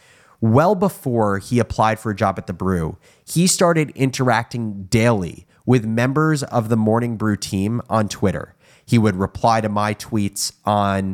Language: English